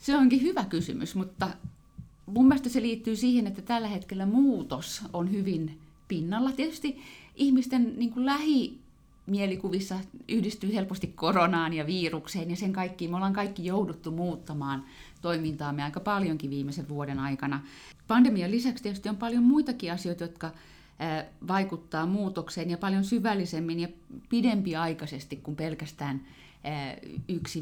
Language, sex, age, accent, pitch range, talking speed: Finnish, female, 30-49, native, 155-195 Hz, 125 wpm